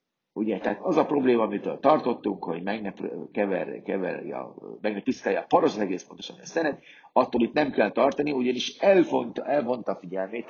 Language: Hungarian